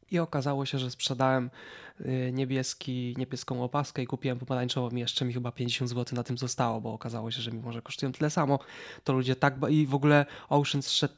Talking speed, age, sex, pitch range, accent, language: 205 wpm, 20-39, male, 125-140 Hz, native, Polish